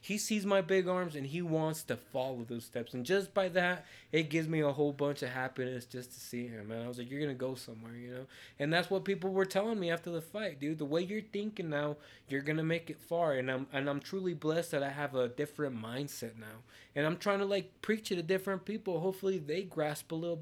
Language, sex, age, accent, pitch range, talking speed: English, male, 20-39, American, 120-160 Hz, 260 wpm